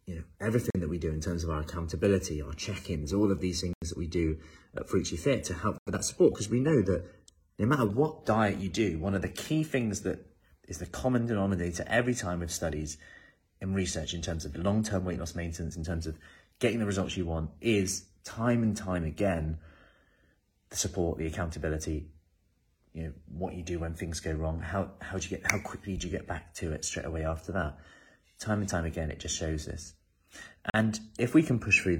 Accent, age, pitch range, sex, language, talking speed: British, 30-49, 80-110 Hz, male, English, 225 wpm